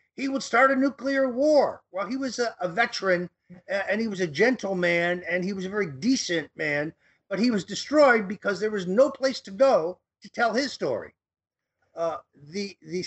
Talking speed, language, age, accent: 195 wpm, English, 50-69, American